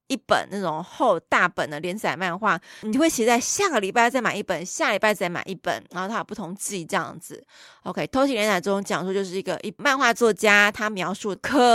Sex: female